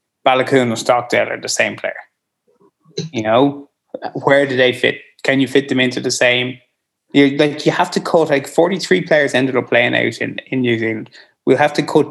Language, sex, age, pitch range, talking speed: English, male, 20-39, 115-140 Hz, 205 wpm